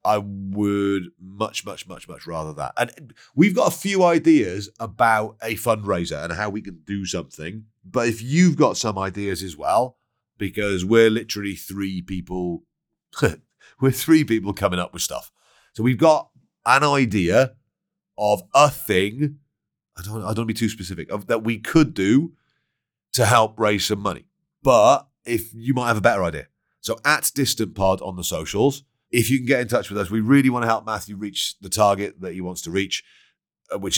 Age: 30-49